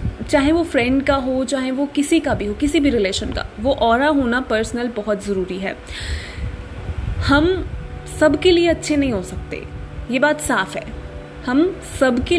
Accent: native